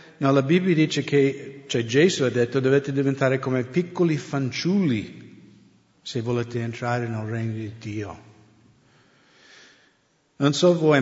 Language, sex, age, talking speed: English, male, 50-69, 130 wpm